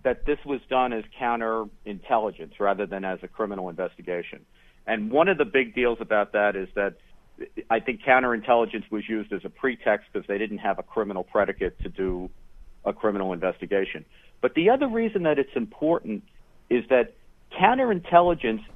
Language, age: English, 50-69